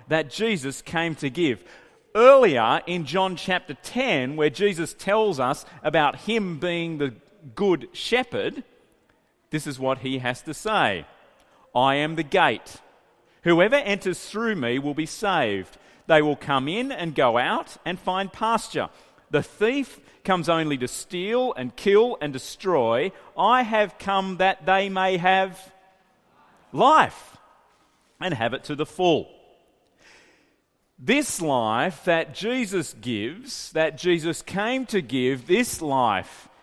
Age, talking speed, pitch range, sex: 40-59, 140 wpm, 155-225 Hz, male